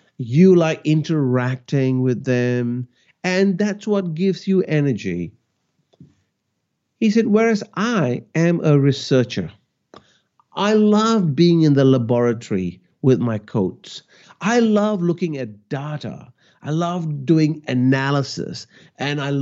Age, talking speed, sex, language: 50-69, 115 wpm, male, English